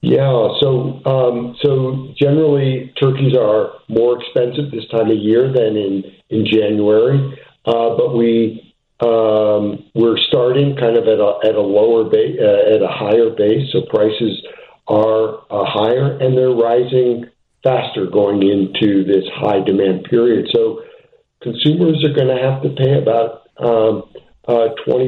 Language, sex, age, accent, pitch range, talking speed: English, male, 50-69, American, 105-145 Hz, 145 wpm